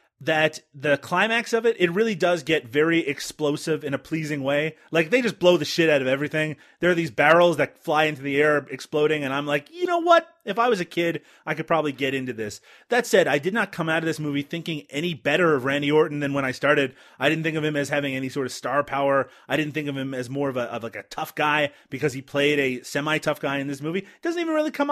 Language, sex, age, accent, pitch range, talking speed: English, male, 30-49, American, 145-185 Hz, 265 wpm